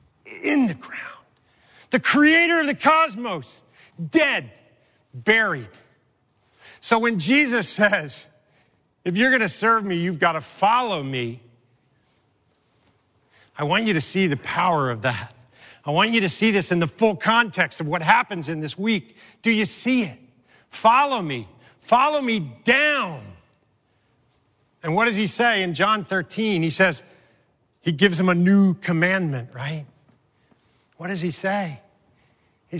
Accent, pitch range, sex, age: American, 130-185 Hz, male, 40-59